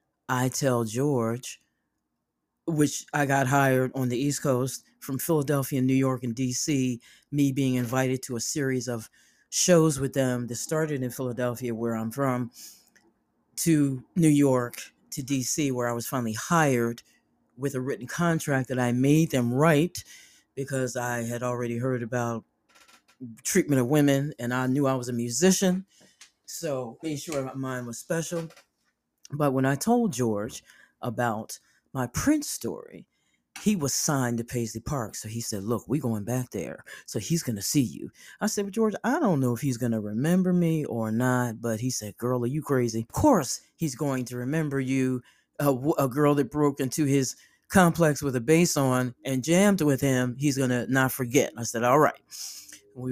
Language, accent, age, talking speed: English, American, 40-59, 180 wpm